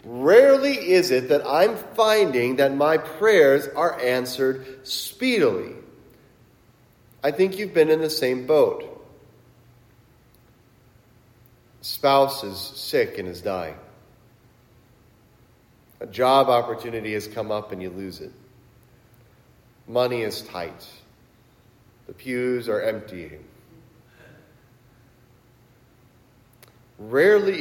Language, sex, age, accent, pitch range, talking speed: English, male, 40-59, American, 120-135 Hz, 95 wpm